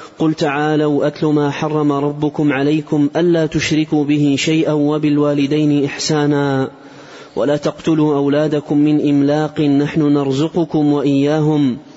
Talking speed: 105 wpm